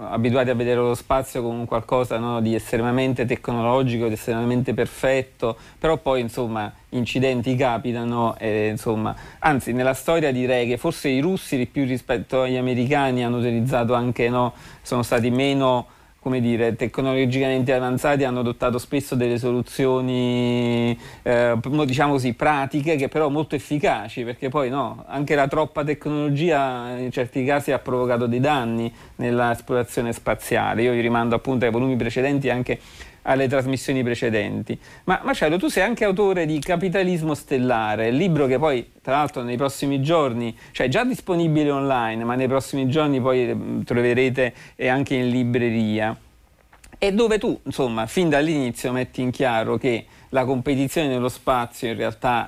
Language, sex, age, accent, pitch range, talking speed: Italian, male, 40-59, native, 120-135 Hz, 155 wpm